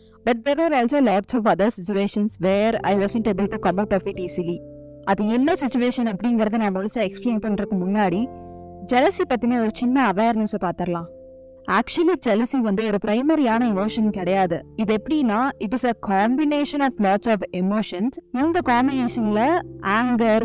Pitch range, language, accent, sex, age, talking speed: 200-250 Hz, Tamil, native, female, 20-39, 55 wpm